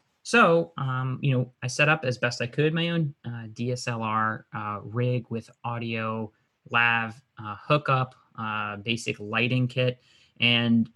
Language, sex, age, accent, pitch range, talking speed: English, male, 30-49, American, 110-135 Hz, 150 wpm